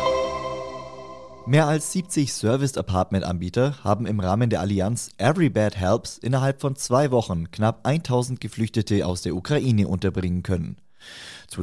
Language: German